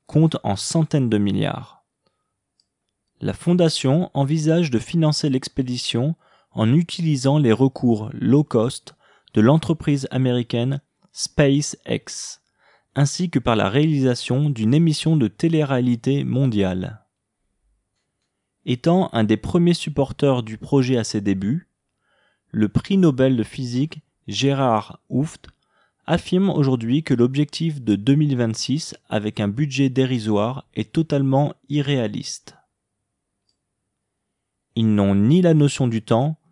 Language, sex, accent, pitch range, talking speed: English, male, French, 110-150 Hz, 110 wpm